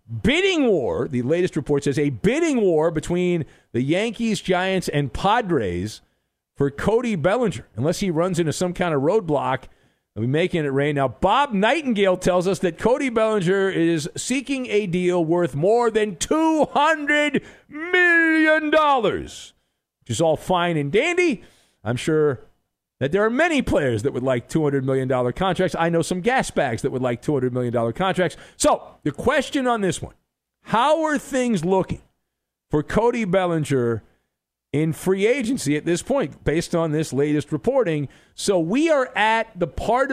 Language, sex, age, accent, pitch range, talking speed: English, male, 50-69, American, 145-225 Hz, 160 wpm